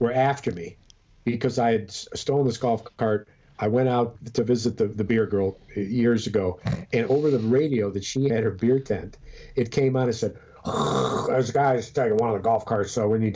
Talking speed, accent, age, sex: 220 wpm, American, 50-69, male